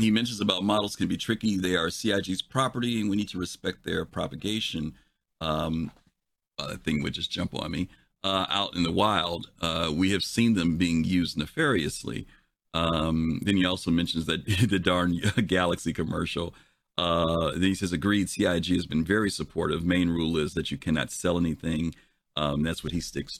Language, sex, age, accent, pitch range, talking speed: English, male, 40-59, American, 85-110 Hz, 185 wpm